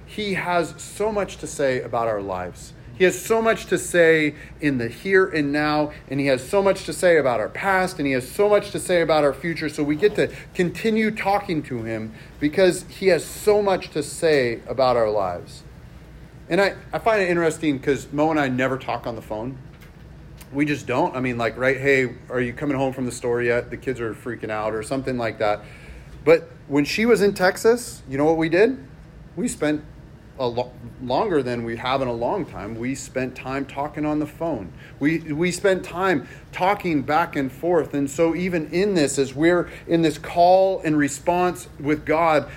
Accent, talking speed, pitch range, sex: American, 210 wpm, 130-175 Hz, male